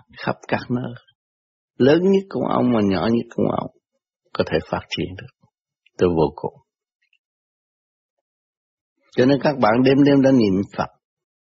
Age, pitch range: 60-79, 100-145 Hz